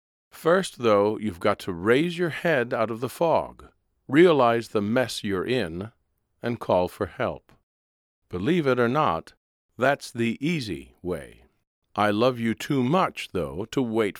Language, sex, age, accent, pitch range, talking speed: English, male, 50-69, American, 95-135 Hz, 155 wpm